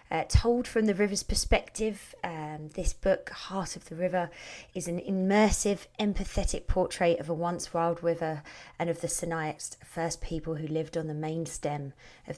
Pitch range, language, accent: 160-200 Hz, English, British